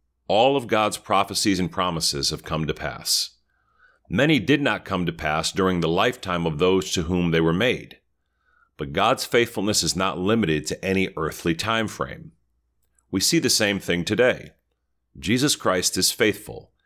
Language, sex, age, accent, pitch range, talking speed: English, male, 40-59, American, 80-105 Hz, 165 wpm